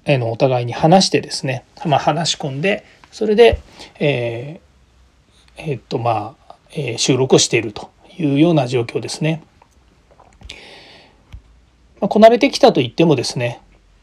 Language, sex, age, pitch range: Japanese, male, 40-59, 115-160 Hz